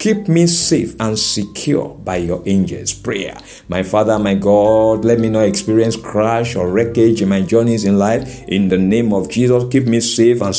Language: English